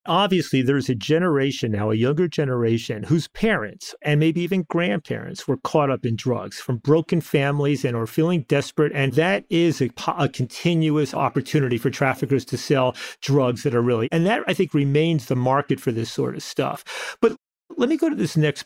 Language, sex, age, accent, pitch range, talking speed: English, male, 40-59, American, 130-170 Hz, 195 wpm